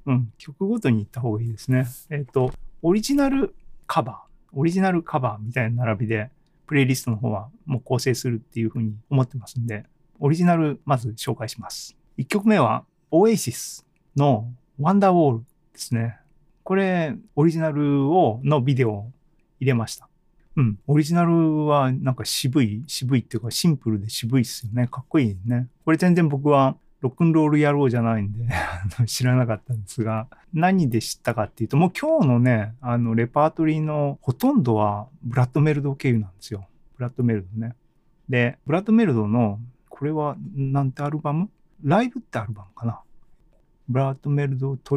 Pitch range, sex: 115-155 Hz, male